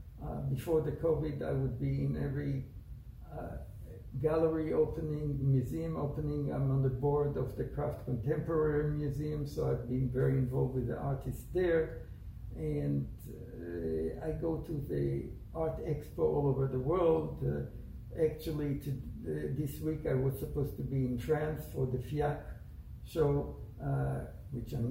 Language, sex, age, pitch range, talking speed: English, male, 60-79, 120-155 Hz, 150 wpm